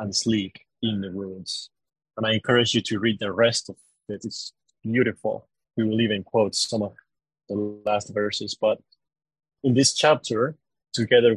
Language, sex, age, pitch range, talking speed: English, male, 30-49, 110-135 Hz, 165 wpm